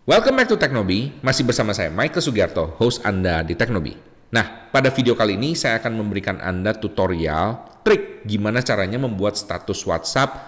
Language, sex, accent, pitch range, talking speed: Indonesian, male, native, 95-130 Hz, 165 wpm